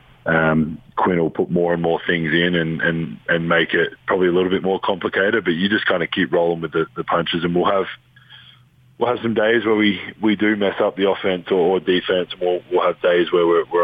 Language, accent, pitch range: English, Australian, 80-110 Hz